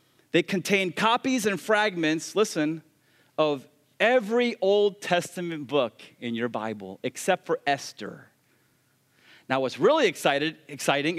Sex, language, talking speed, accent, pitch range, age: male, English, 115 wpm, American, 170-260 Hz, 30-49